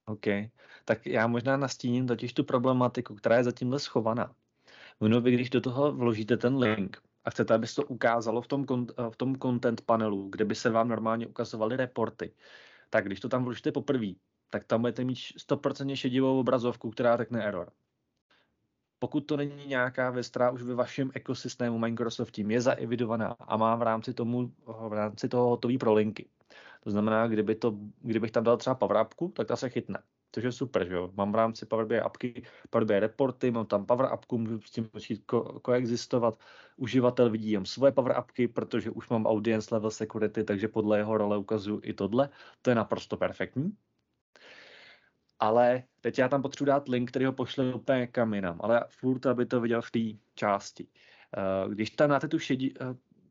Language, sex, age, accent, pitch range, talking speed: Czech, male, 20-39, native, 110-125 Hz, 180 wpm